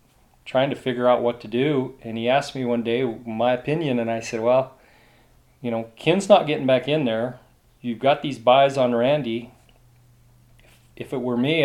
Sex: male